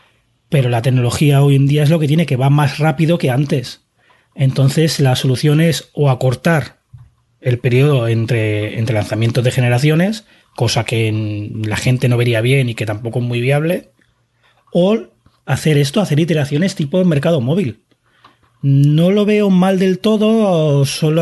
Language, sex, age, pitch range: Spanish, male, 30-49, 125-165 Hz